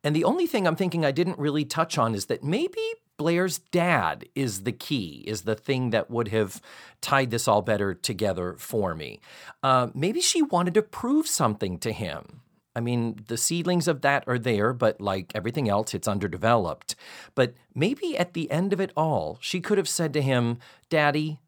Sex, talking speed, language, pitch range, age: male, 195 wpm, English, 115-155 Hz, 40-59